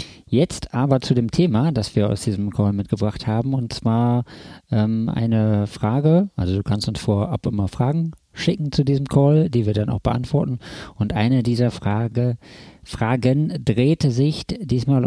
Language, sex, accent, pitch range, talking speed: German, male, German, 110-135 Hz, 160 wpm